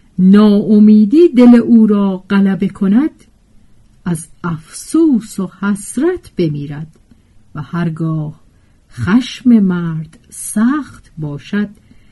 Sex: female